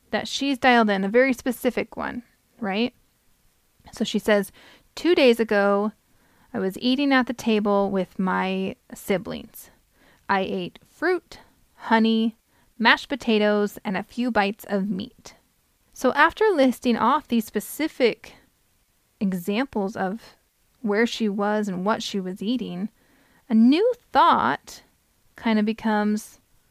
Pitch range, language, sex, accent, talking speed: 205-255 Hz, English, female, American, 130 wpm